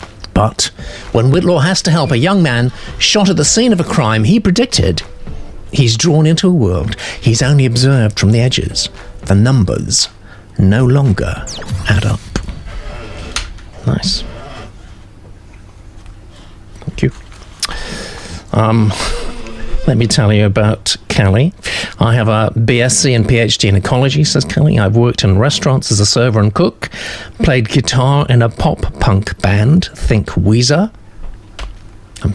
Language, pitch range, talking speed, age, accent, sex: English, 100-135 Hz, 135 wpm, 60-79, British, male